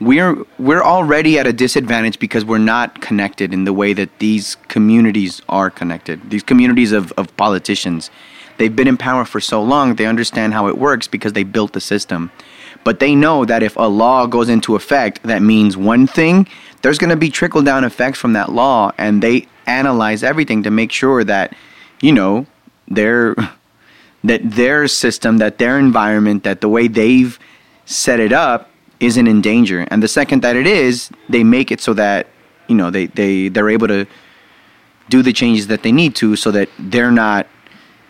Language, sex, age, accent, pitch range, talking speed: English, male, 30-49, American, 105-125 Hz, 185 wpm